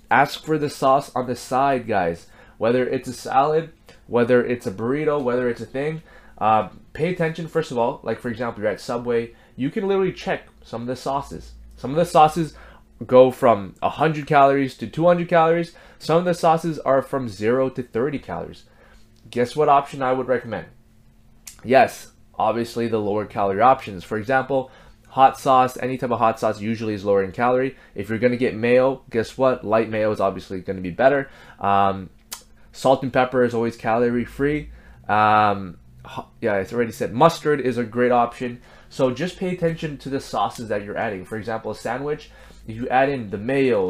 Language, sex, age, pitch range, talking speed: English, male, 20-39, 110-140 Hz, 195 wpm